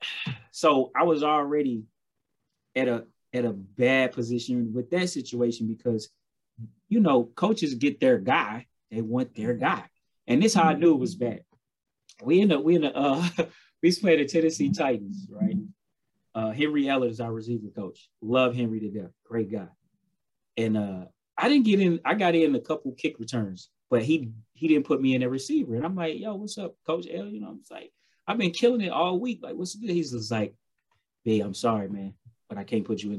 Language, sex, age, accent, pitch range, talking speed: English, male, 30-49, American, 115-175 Hz, 210 wpm